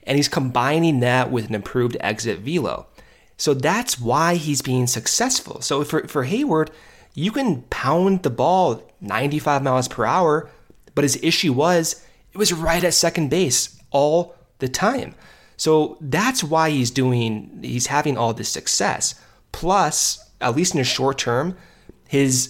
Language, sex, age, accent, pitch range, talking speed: English, male, 30-49, American, 125-160 Hz, 155 wpm